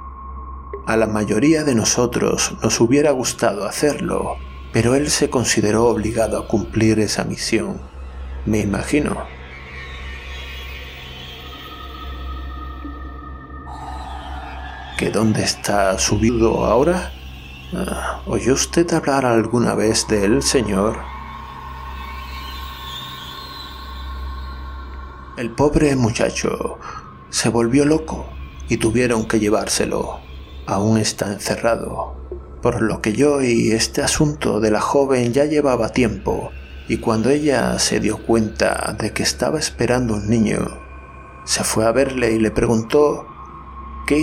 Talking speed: 110 wpm